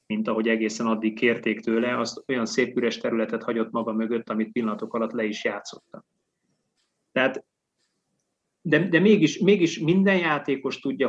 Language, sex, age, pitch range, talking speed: Hungarian, male, 30-49, 115-140 Hz, 145 wpm